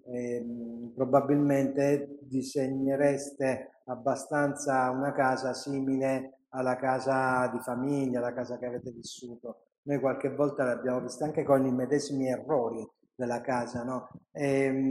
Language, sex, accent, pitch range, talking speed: Italian, male, native, 130-145 Hz, 120 wpm